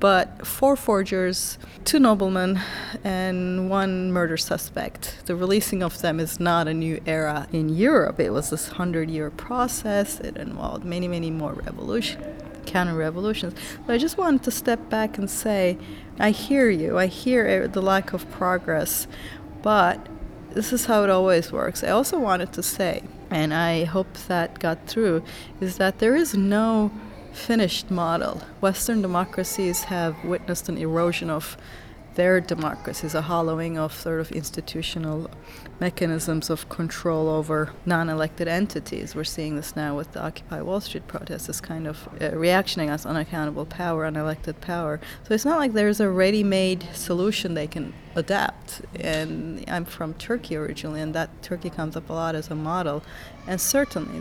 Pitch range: 160-200 Hz